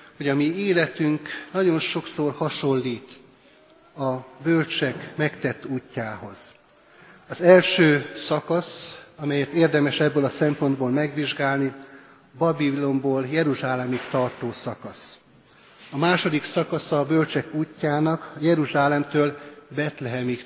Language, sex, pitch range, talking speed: Hungarian, male, 130-160 Hz, 95 wpm